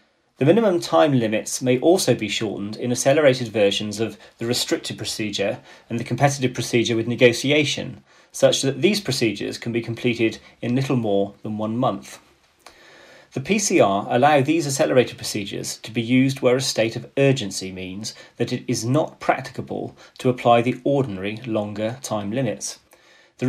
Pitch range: 110-135 Hz